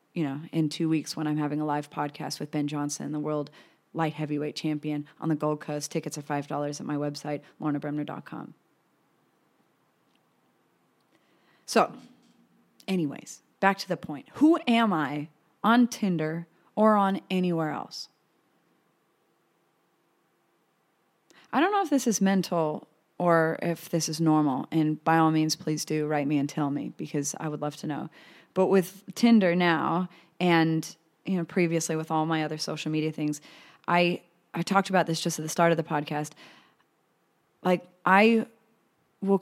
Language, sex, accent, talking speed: English, female, American, 160 wpm